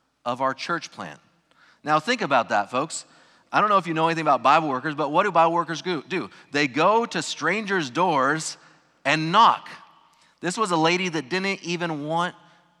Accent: American